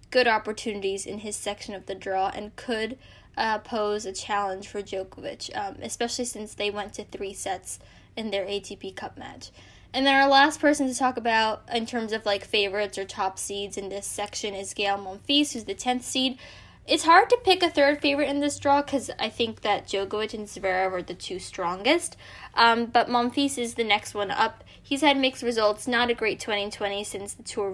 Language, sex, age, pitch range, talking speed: English, female, 10-29, 200-250 Hz, 205 wpm